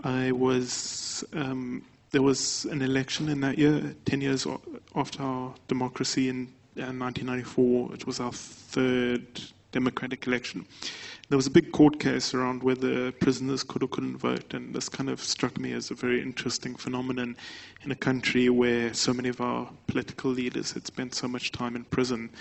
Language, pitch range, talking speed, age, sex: English, 120-130 Hz, 175 wpm, 20-39, male